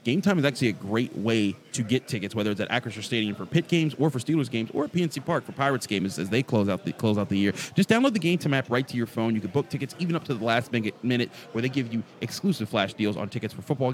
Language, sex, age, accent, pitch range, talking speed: English, male, 30-49, American, 110-140 Hz, 295 wpm